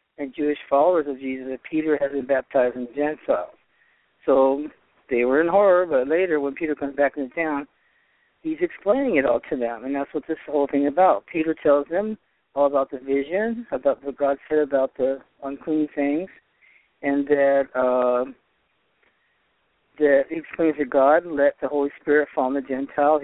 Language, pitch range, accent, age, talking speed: English, 135-155 Hz, American, 60-79, 185 wpm